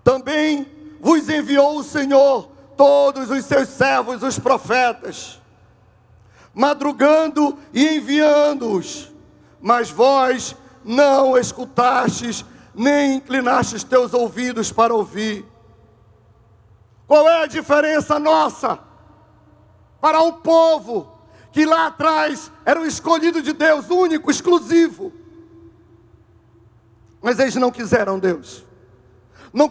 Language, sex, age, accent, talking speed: Portuguese, male, 50-69, Brazilian, 95 wpm